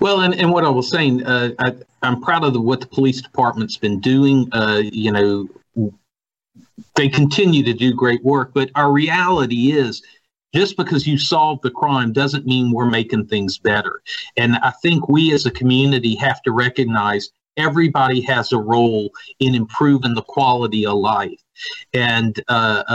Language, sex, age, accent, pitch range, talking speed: English, male, 50-69, American, 120-145 Hz, 165 wpm